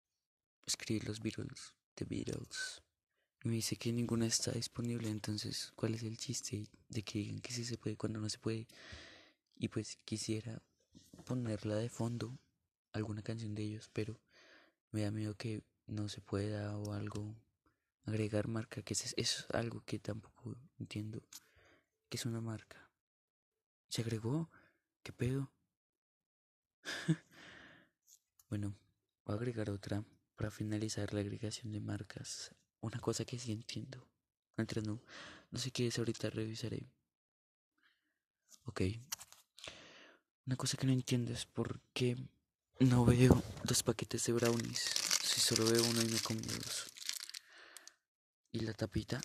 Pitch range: 105-120 Hz